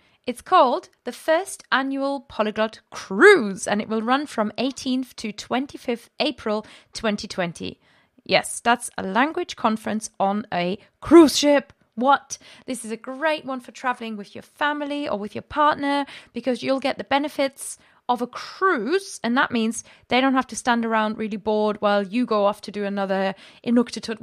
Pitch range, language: 210-270 Hz, English